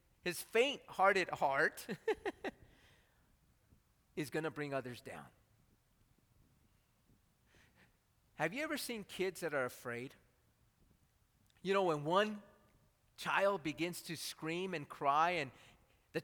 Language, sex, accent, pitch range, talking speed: English, male, American, 155-230 Hz, 105 wpm